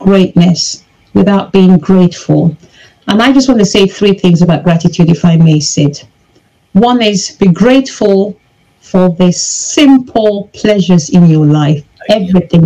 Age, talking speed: 50-69, 140 wpm